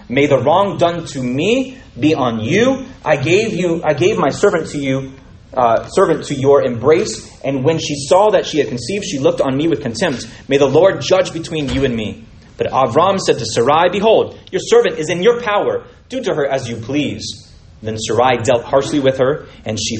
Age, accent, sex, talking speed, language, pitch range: 30-49, American, male, 215 wpm, English, 115-155 Hz